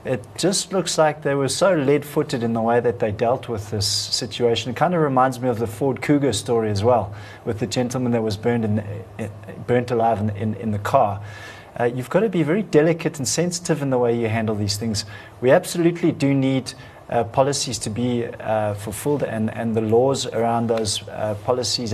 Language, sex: English, male